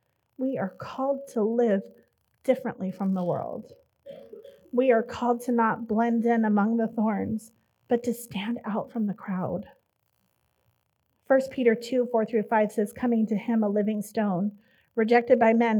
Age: 30-49